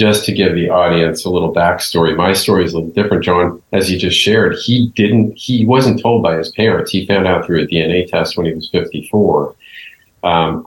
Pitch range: 85-105 Hz